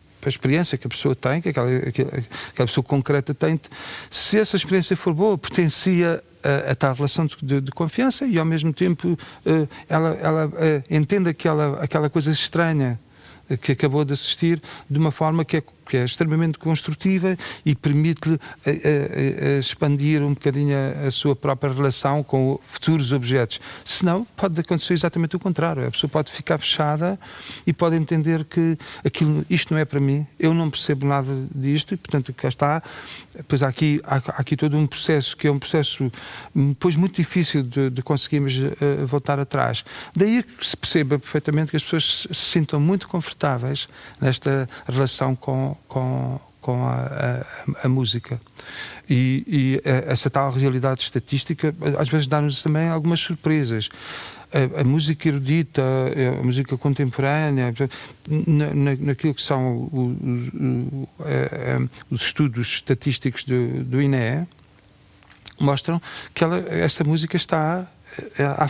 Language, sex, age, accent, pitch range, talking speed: Portuguese, male, 40-59, Portuguese, 135-160 Hz, 155 wpm